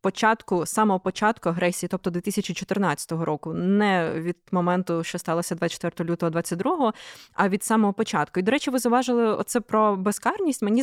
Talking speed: 155 wpm